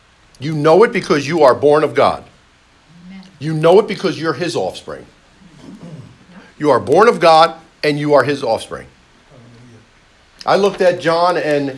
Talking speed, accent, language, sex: 160 wpm, American, English, male